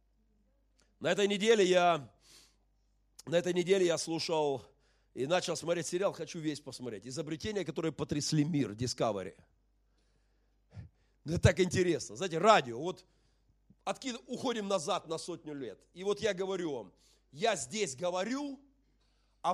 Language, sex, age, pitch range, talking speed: Russian, male, 40-59, 160-225 Hz, 130 wpm